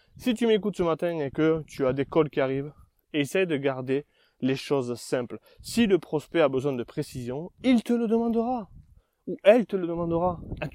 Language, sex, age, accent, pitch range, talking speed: French, male, 20-39, French, 135-180 Hz, 200 wpm